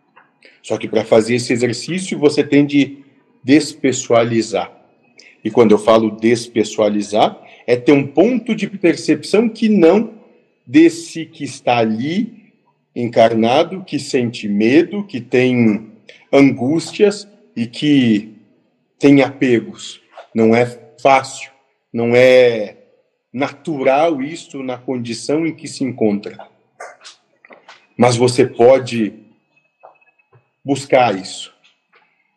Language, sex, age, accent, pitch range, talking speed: Portuguese, male, 50-69, Brazilian, 115-175 Hz, 105 wpm